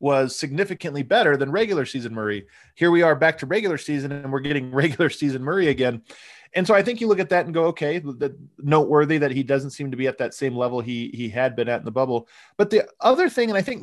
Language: English